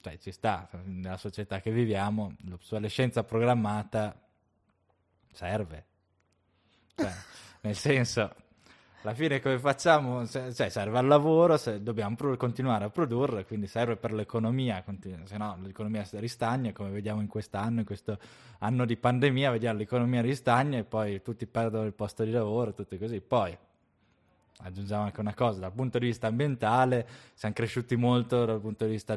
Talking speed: 155 wpm